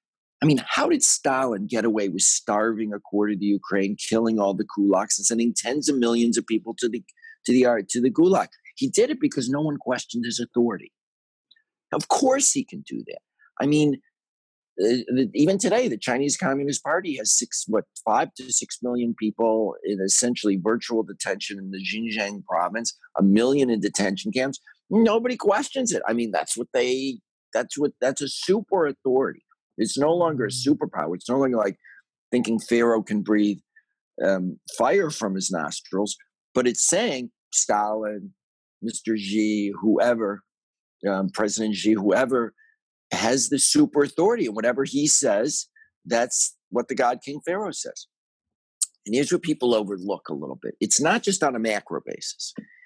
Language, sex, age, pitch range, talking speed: English, male, 50-69, 105-150 Hz, 170 wpm